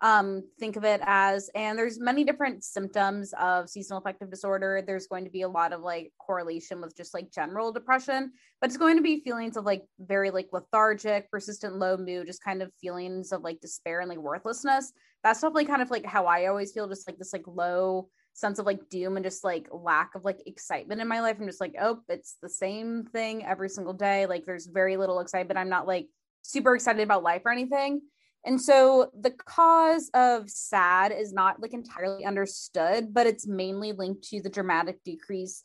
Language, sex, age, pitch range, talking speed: English, female, 20-39, 185-230 Hz, 210 wpm